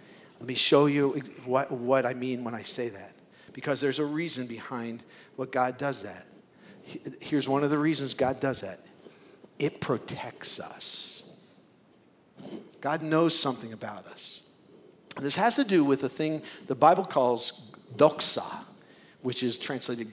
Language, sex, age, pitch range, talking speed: English, male, 50-69, 125-165 Hz, 155 wpm